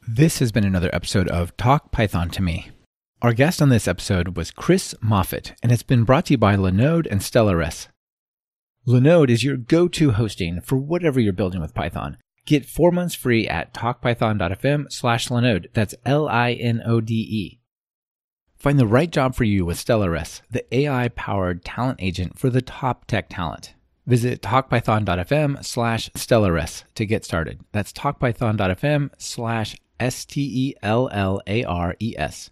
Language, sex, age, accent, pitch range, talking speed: English, male, 30-49, American, 95-130 Hz, 140 wpm